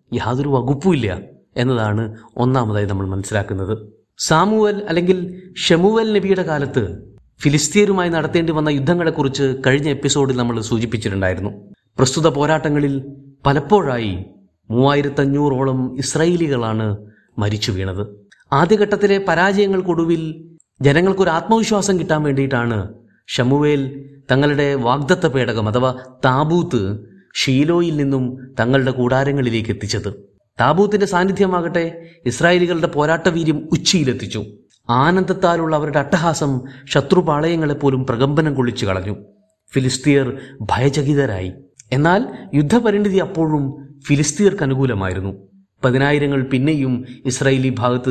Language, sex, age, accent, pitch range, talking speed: Malayalam, male, 30-49, native, 120-160 Hz, 85 wpm